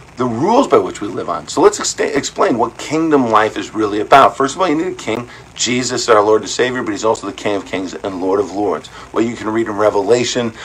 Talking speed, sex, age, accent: 255 wpm, male, 50-69, American